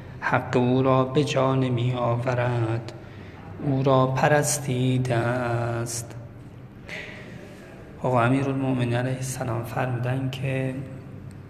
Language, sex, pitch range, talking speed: Persian, male, 115-135 Hz, 95 wpm